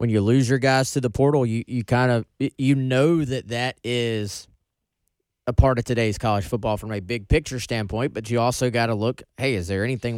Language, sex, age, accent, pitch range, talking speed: English, male, 20-39, American, 105-130 Hz, 220 wpm